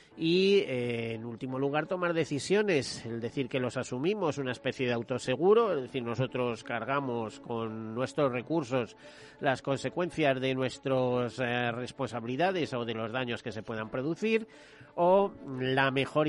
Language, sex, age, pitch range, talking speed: Spanish, male, 40-59, 125-150 Hz, 145 wpm